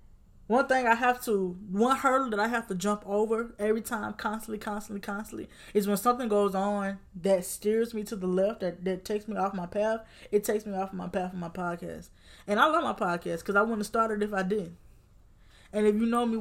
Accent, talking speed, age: American, 230 wpm, 10-29